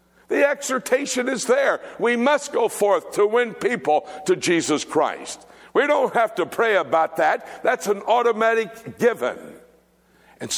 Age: 60-79